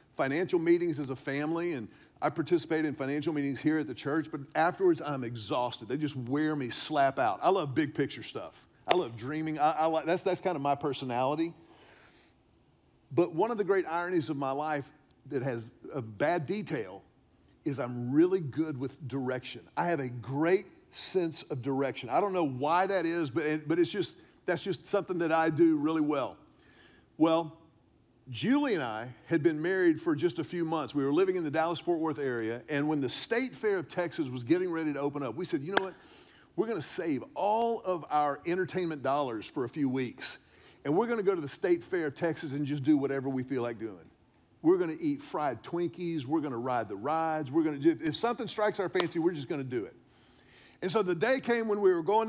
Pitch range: 140-175 Hz